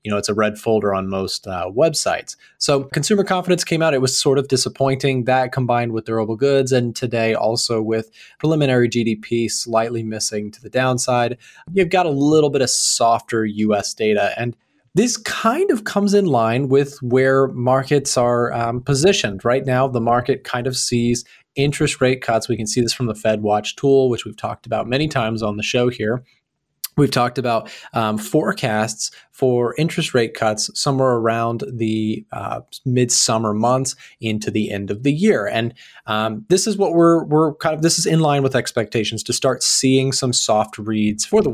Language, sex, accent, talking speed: English, male, American, 190 wpm